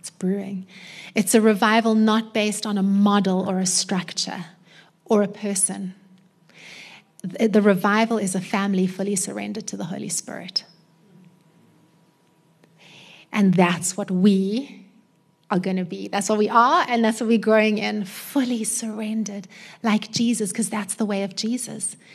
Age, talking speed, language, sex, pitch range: 30-49, 145 wpm, English, female, 190-235 Hz